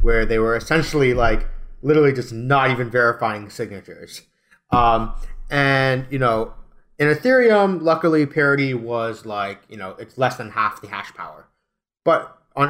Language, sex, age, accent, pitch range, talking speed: English, male, 30-49, American, 105-145 Hz, 150 wpm